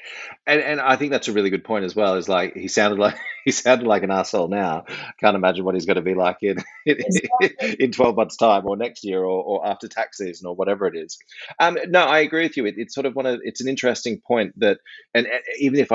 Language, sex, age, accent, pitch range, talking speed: English, male, 30-49, Australian, 95-110 Hz, 260 wpm